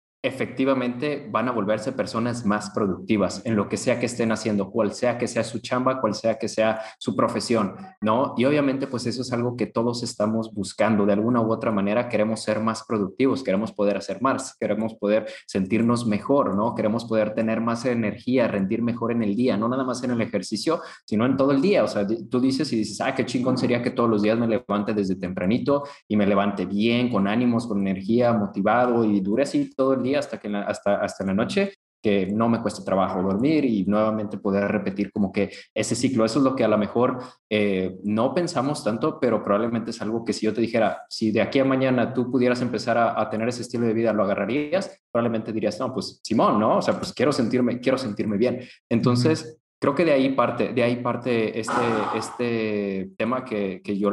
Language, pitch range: Spanish, 105-125 Hz